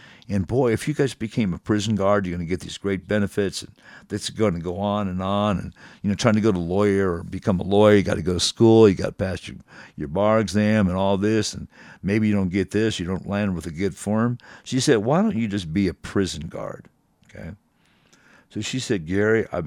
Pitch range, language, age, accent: 90-105 Hz, English, 50-69, American